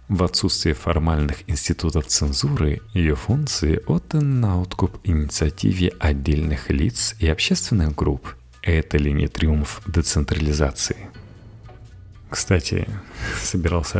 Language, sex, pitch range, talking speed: Russian, male, 75-95 Hz, 100 wpm